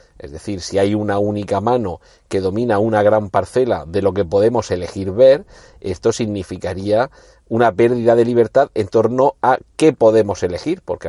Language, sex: Spanish, male